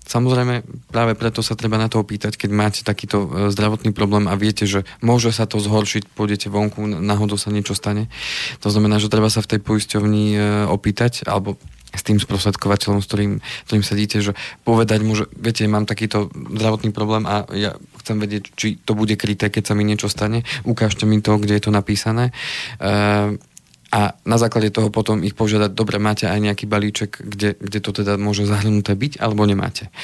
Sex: male